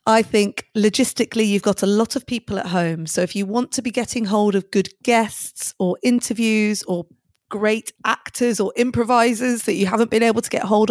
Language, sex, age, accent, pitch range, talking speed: English, female, 30-49, British, 175-225 Hz, 205 wpm